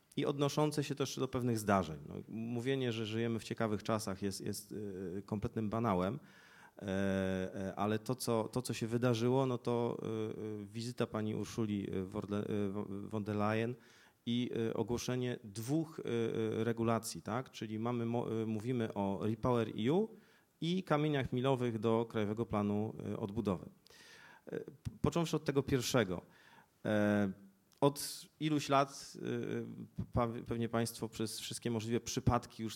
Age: 40-59